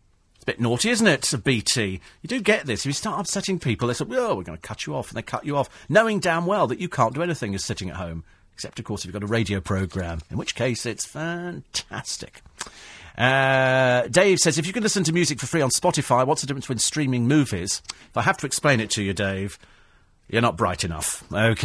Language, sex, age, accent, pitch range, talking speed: English, male, 40-59, British, 95-155 Hz, 240 wpm